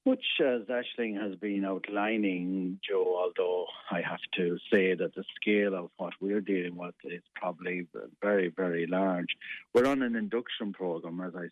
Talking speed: 170 wpm